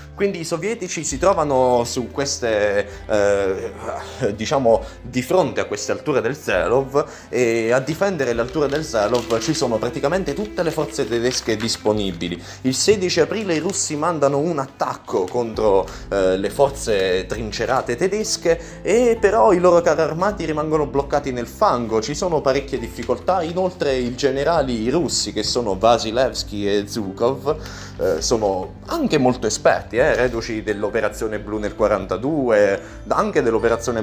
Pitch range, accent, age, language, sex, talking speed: 115-170 Hz, native, 20-39, Italian, male, 145 wpm